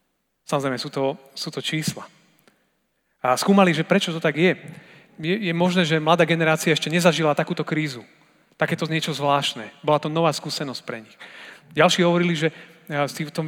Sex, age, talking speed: male, 30-49, 170 wpm